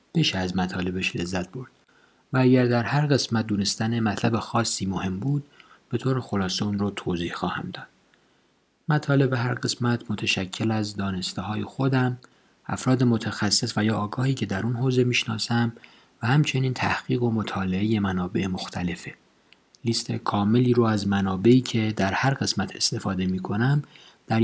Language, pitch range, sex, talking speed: Persian, 95-120 Hz, male, 150 wpm